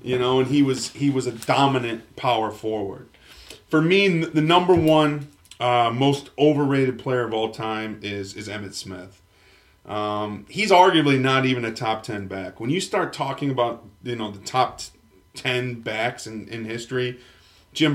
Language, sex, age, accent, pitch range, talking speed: English, male, 30-49, American, 110-135 Hz, 170 wpm